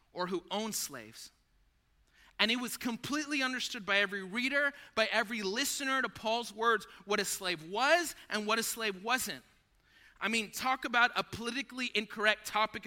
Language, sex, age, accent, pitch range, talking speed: English, male, 30-49, American, 185-240 Hz, 165 wpm